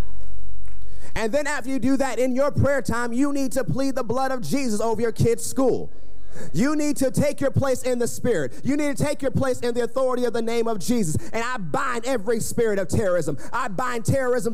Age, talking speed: 30-49, 225 wpm